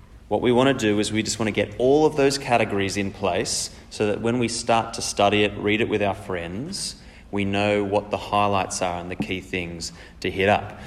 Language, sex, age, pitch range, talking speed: English, male, 30-49, 100-120 Hz, 235 wpm